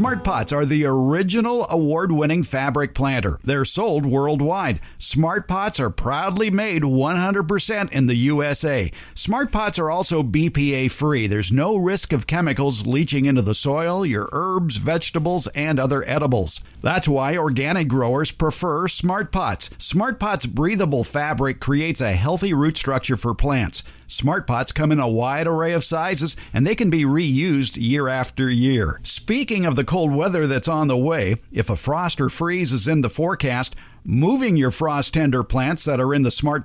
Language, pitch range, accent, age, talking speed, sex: English, 130-170 Hz, American, 50-69, 170 wpm, male